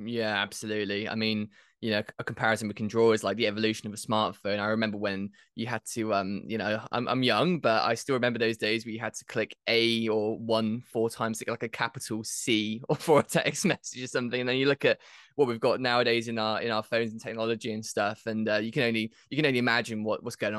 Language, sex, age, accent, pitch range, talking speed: English, male, 20-39, British, 110-125 Hz, 260 wpm